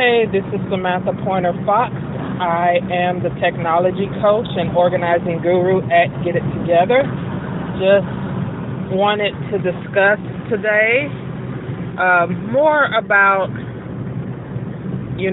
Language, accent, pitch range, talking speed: English, American, 155-185 Hz, 110 wpm